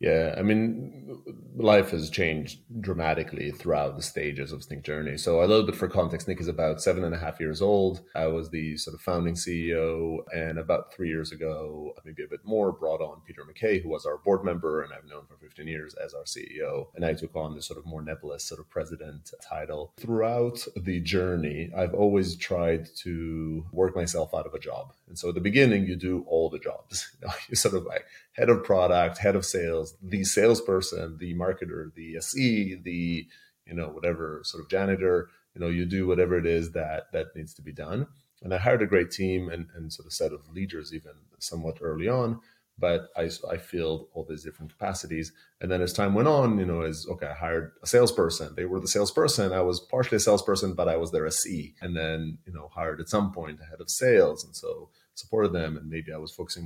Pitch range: 80-100 Hz